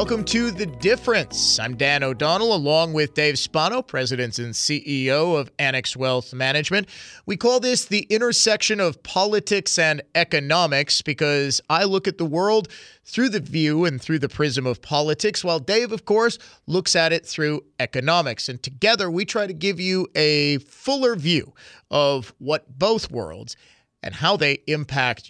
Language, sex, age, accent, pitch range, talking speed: English, male, 30-49, American, 135-185 Hz, 165 wpm